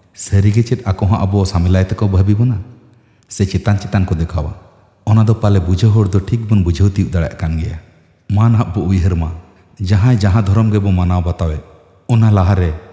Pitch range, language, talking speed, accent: 90-105 Hz, Bengali, 115 wpm, native